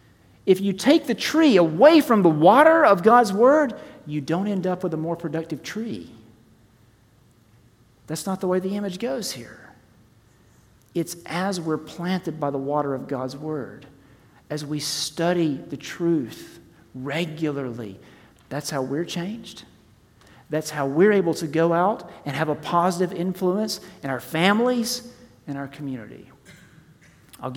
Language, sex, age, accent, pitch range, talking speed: English, male, 40-59, American, 130-175 Hz, 150 wpm